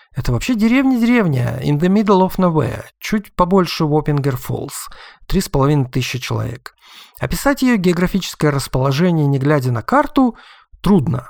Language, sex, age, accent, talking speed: Russian, male, 50-69, native, 135 wpm